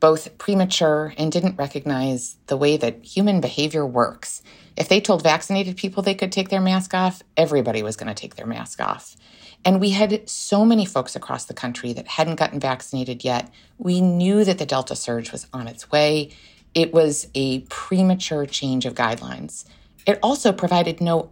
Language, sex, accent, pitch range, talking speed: English, female, American, 135-185 Hz, 185 wpm